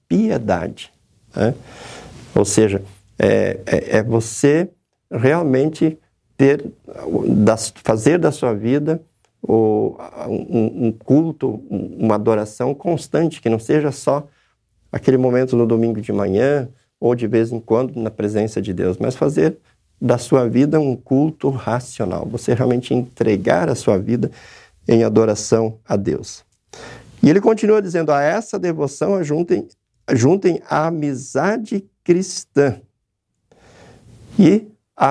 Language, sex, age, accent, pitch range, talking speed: Portuguese, male, 50-69, Brazilian, 110-140 Hz, 125 wpm